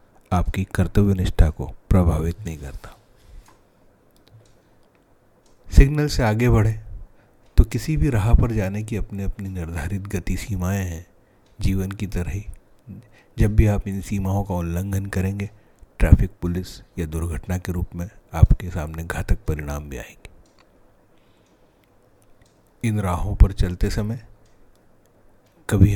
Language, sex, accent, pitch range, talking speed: Hindi, male, native, 90-105 Hz, 125 wpm